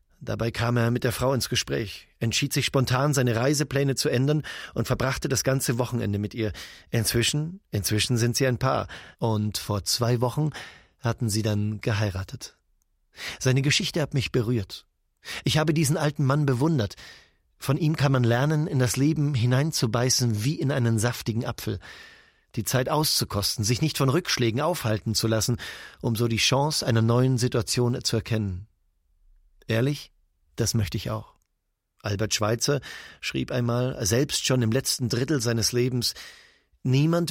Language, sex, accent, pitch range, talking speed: German, male, German, 115-140 Hz, 155 wpm